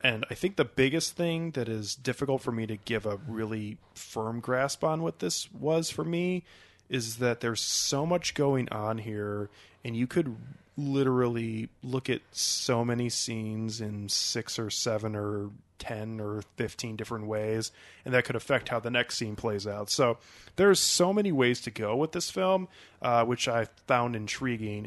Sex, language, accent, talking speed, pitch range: male, English, American, 180 wpm, 110-135 Hz